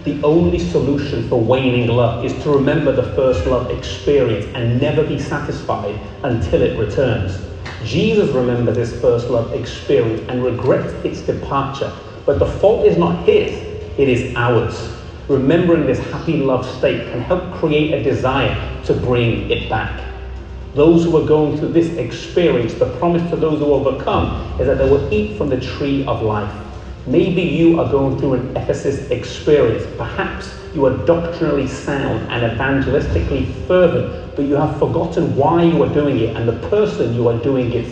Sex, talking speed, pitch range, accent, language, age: male, 170 wpm, 120-160 Hz, British, English, 30-49